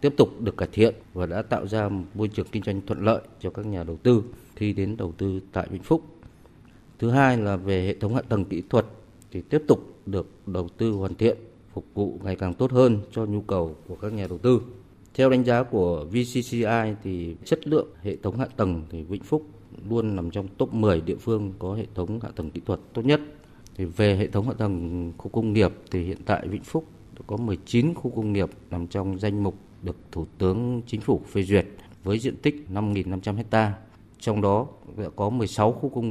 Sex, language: male, Vietnamese